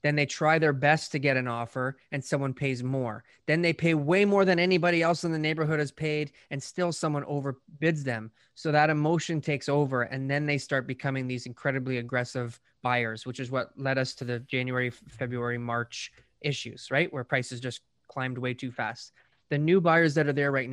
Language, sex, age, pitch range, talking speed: English, male, 20-39, 125-150 Hz, 205 wpm